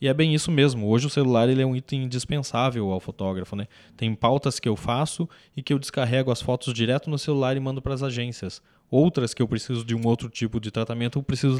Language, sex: Portuguese, male